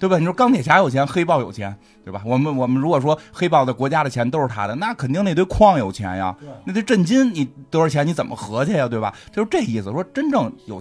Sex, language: male, Chinese